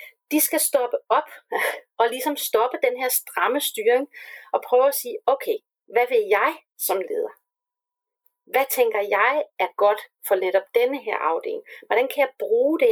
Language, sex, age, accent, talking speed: Danish, female, 40-59, native, 170 wpm